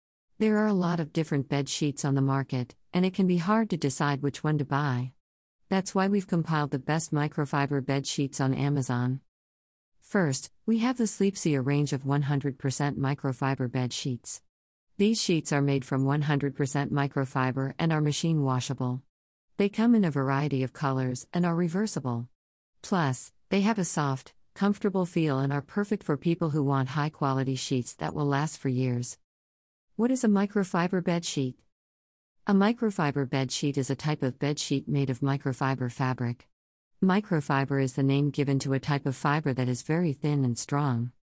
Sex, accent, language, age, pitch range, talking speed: female, American, English, 50-69, 130-160 Hz, 175 wpm